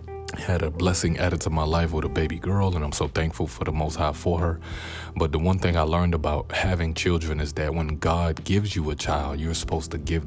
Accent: American